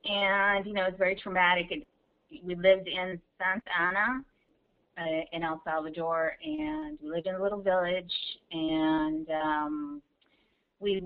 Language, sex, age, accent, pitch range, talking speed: English, female, 30-49, American, 160-200 Hz, 140 wpm